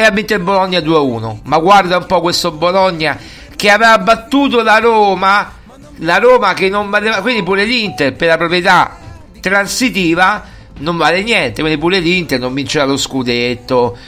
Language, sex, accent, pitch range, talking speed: Italian, male, native, 135-195 Hz, 150 wpm